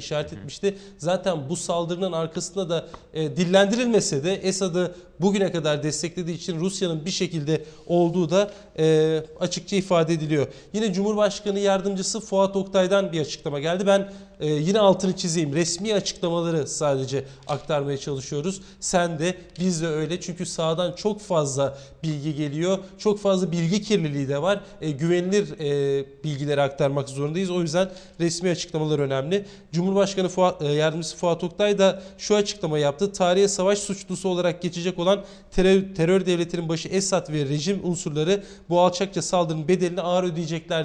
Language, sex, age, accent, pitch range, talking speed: Turkish, male, 40-59, native, 160-195 Hz, 145 wpm